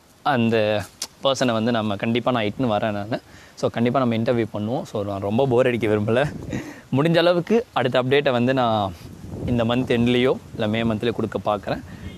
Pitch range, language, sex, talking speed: 110-130 Hz, Tamil, male, 165 wpm